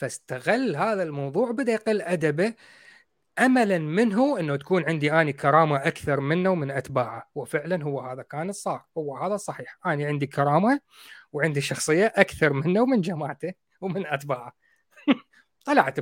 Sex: male